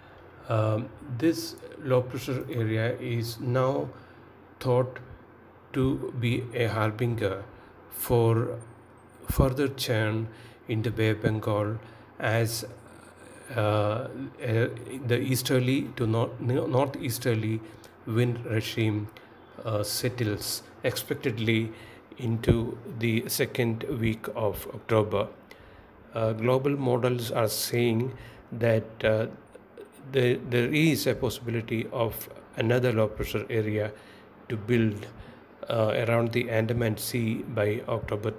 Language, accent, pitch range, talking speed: English, Indian, 110-125 Hz, 100 wpm